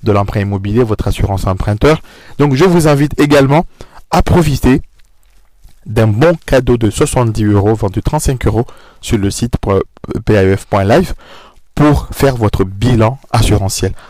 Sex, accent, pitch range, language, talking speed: male, French, 105-130 Hz, French, 130 wpm